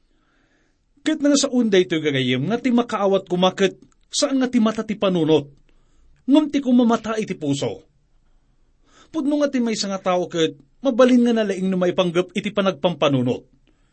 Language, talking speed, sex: English, 155 wpm, male